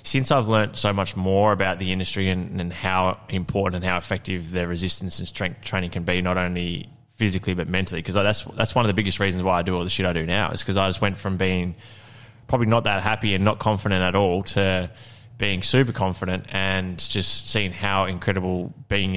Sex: male